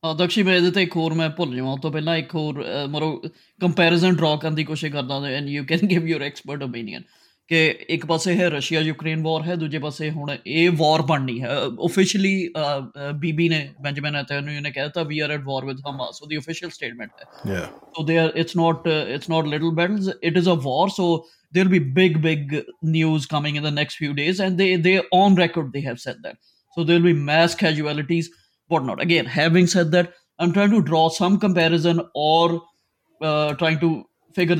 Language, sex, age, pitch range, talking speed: Punjabi, male, 20-39, 150-175 Hz, 210 wpm